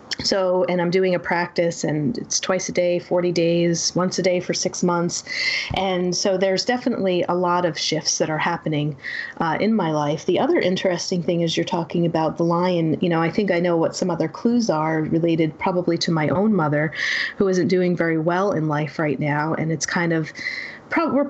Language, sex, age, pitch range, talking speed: English, female, 30-49, 160-185 Hz, 210 wpm